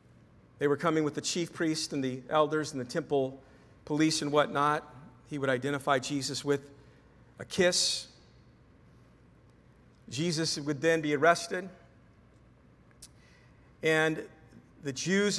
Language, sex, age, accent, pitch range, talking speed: English, male, 50-69, American, 140-165 Hz, 120 wpm